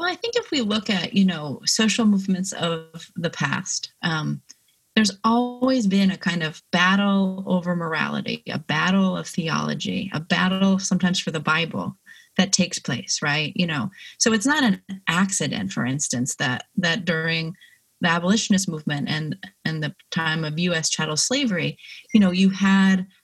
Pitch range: 170-205 Hz